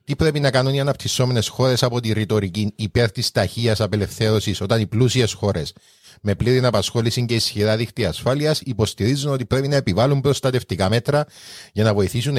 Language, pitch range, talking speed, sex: Greek, 100-130 Hz, 170 wpm, male